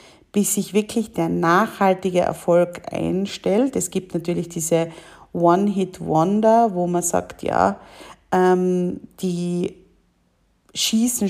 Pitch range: 175-210 Hz